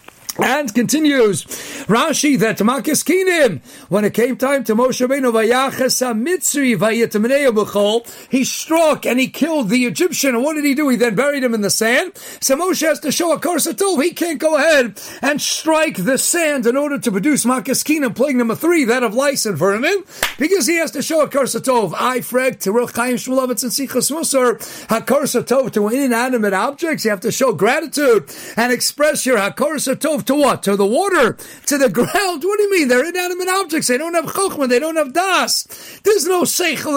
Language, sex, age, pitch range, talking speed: English, male, 50-69, 250-315 Hz, 180 wpm